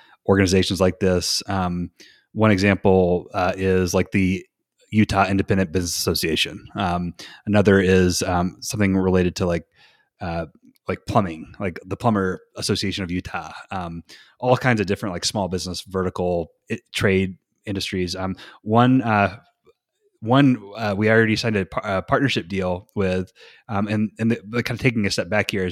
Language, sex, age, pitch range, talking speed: English, male, 30-49, 95-110 Hz, 155 wpm